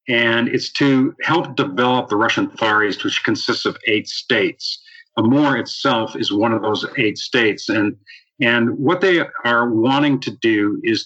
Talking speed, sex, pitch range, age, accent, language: 170 wpm, male, 115-155 Hz, 50-69, American, English